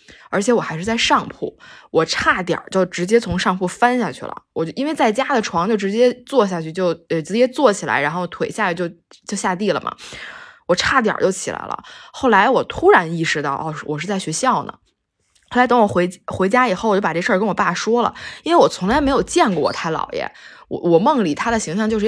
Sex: female